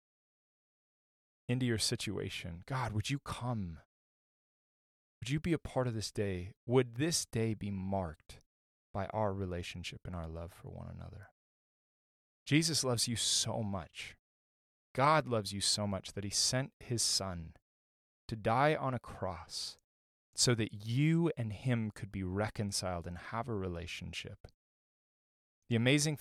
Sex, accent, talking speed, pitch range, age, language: male, American, 145 wpm, 90-120 Hz, 20-39, English